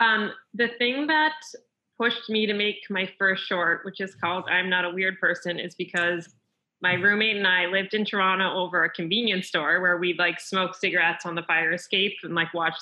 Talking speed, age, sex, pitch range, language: 205 wpm, 20-39, female, 180-215 Hz, English